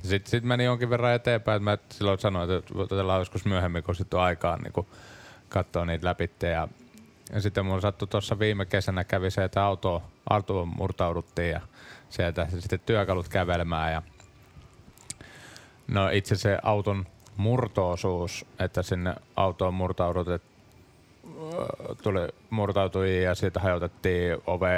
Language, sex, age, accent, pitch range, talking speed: Finnish, male, 30-49, native, 85-100 Hz, 125 wpm